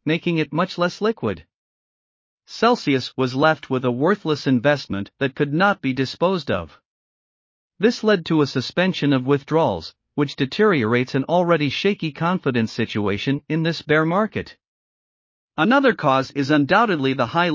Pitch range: 130-175 Hz